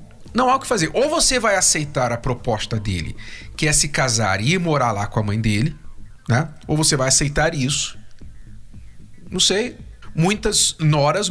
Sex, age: male, 40-59